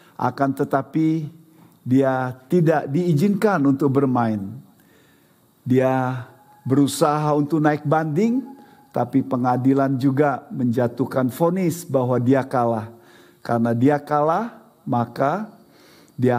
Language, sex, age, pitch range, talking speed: Indonesian, male, 50-69, 120-150 Hz, 90 wpm